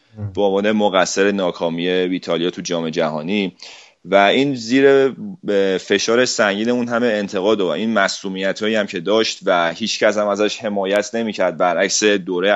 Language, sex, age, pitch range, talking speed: Persian, male, 30-49, 95-115 Hz, 150 wpm